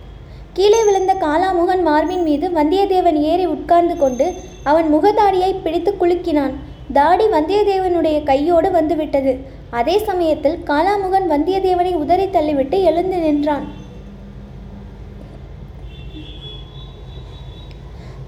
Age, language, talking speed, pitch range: 20-39, Tamil, 80 wpm, 300-375 Hz